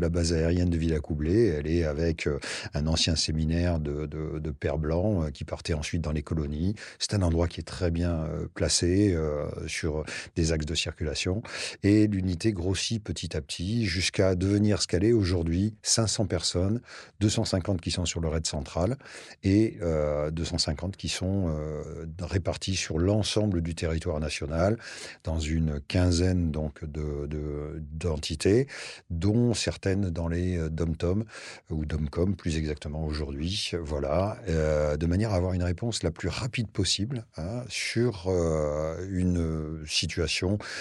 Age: 40-59